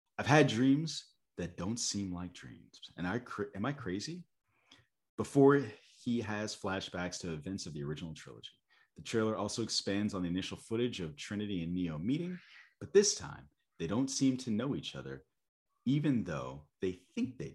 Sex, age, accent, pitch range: male, 30-49, American, 85-120 Hz